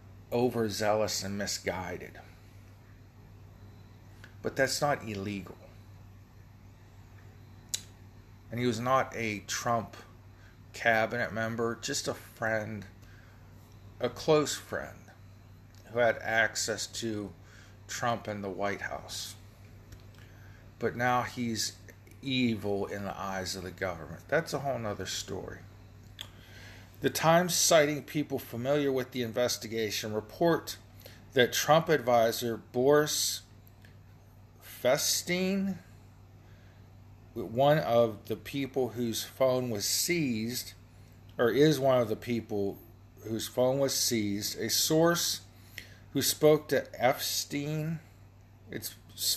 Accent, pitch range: American, 100-120 Hz